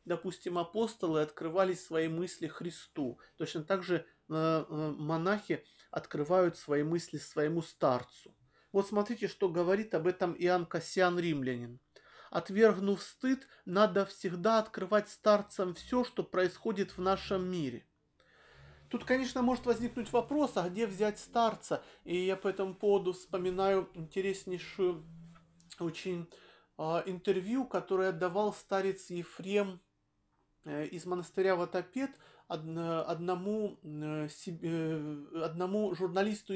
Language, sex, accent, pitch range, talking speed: Russian, male, native, 170-205 Hz, 105 wpm